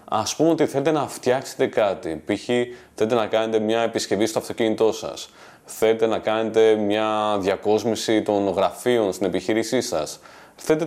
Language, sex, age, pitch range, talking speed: Greek, male, 30-49, 110-155 Hz, 150 wpm